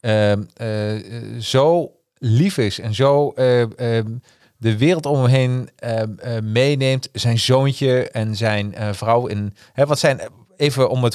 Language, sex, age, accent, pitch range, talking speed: Dutch, male, 40-59, Dutch, 110-130 Hz, 160 wpm